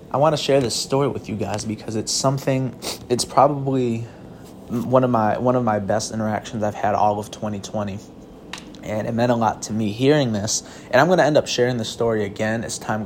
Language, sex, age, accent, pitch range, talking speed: English, male, 20-39, American, 105-125 Hz, 220 wpm